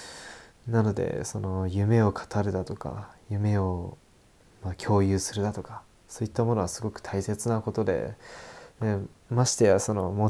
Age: 20-39